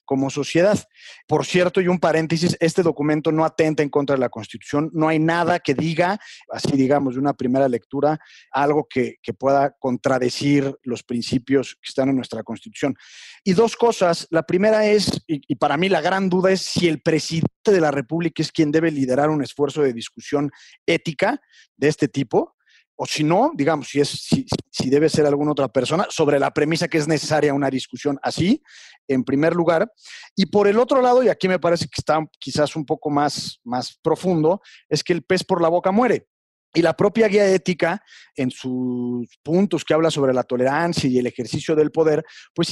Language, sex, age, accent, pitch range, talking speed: Spanish, male, 40-59, Mexican, 135-170 Hz, 195 wpm